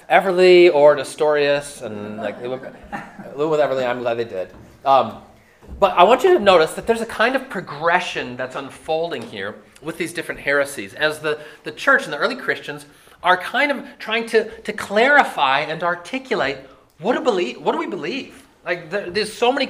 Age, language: 30-49, English